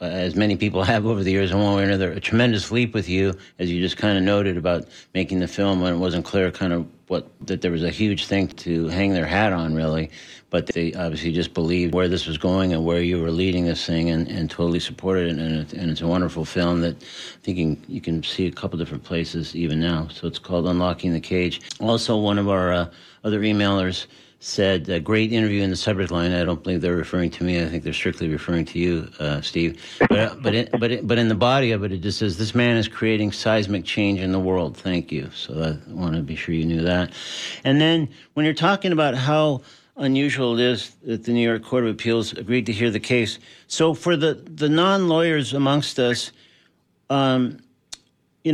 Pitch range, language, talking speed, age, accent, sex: 85-120 Hz, English, 235 wpm, 50-69, American, male